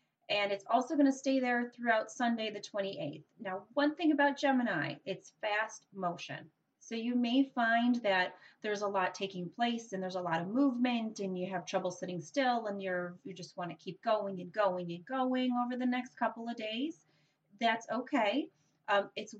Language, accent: English, American